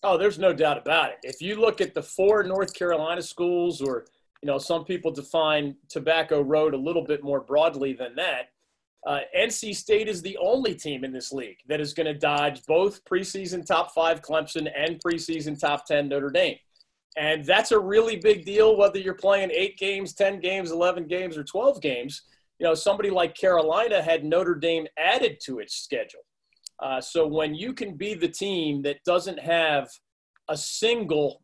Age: 30-49